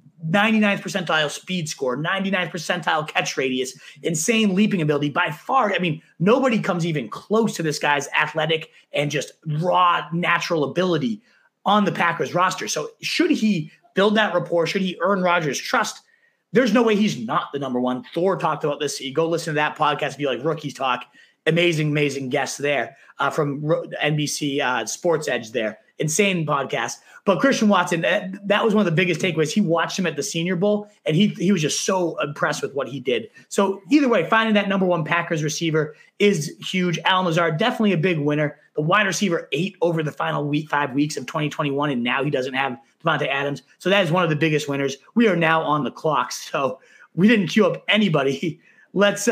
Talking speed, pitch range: 200 wpm, 150-200 Hz